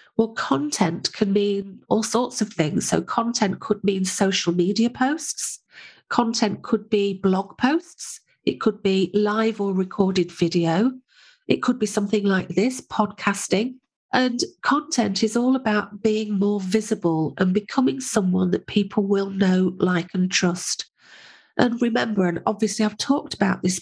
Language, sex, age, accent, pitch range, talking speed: English, female, 50-69, British, 185-230 Hz, 150 wpm